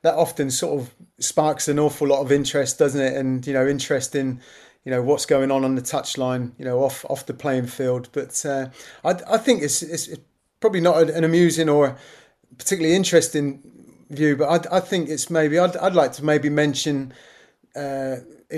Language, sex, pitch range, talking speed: English, male, 135-160 Hz, 195 wpm